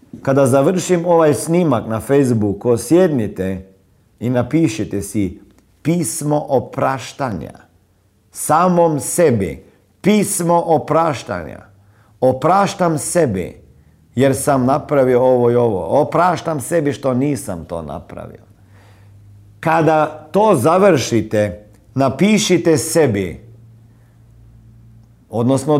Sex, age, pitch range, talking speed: male, 50-69, 110-160 Hz, 85 wpm